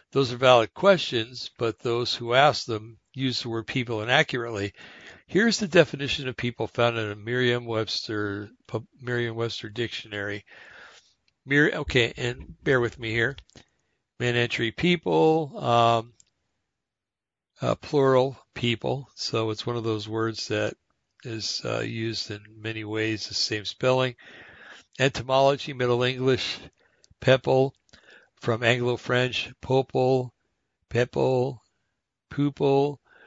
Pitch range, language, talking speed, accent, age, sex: 110-130 Hz, English, 115 wpm, American, 60-79, male